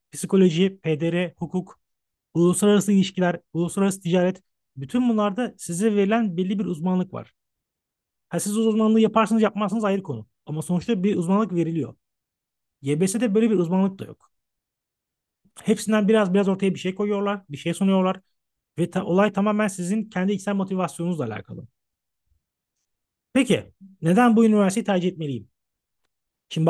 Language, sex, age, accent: Turkish, male, 40-59, native